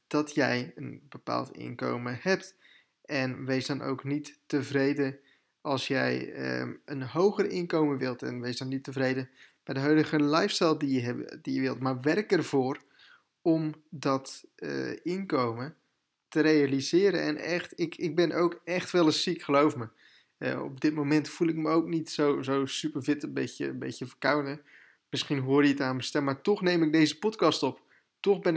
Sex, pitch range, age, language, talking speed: male, 135-155 Hz, 20-39, Dutch, 180 wpm